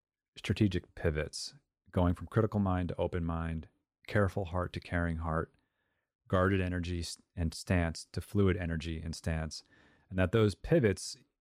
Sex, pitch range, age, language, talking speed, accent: male, 85-105 Hz, 30-49, English, 140 wpm, American